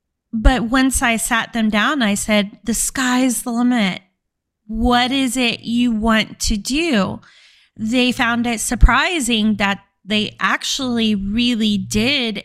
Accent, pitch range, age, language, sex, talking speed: American, 205-255 Hz, 20-39, English, female, 135 wpm